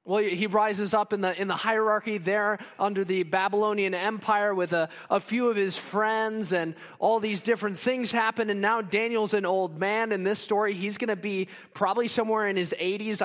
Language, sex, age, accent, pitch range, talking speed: English, male, 20-39, American, 190-225 Hz, 205 wpm